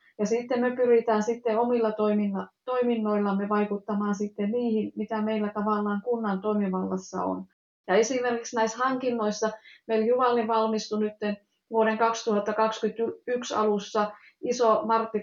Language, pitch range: Finnish, 200-220 Hz